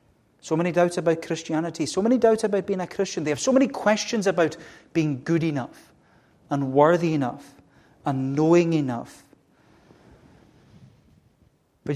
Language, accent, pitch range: English, British, 135-165 Hz